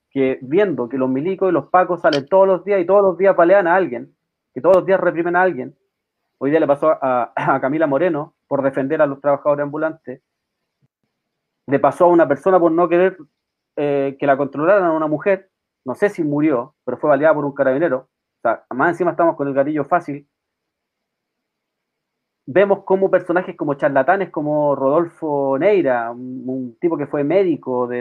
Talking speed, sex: 190 wpm, male